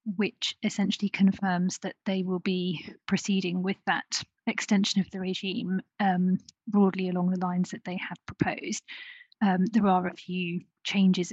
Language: English